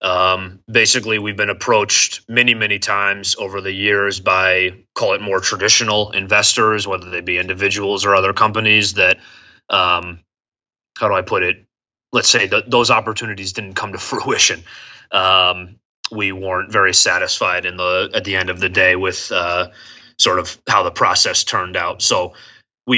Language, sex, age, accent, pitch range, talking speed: English, male, 20-39, American, 95-110 Hz, 165 wpm